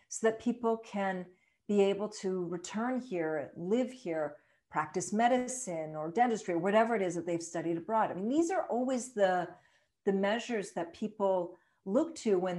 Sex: female